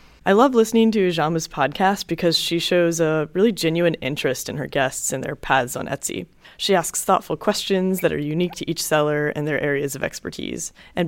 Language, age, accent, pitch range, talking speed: English, 20-39, American, 155-195 Hz, 200 wpm